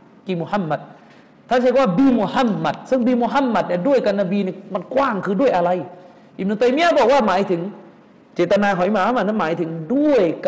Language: Thai